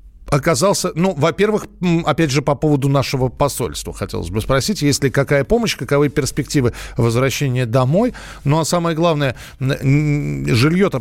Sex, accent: male, native